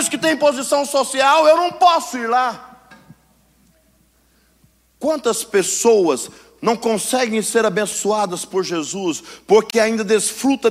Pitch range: 215-295 Hz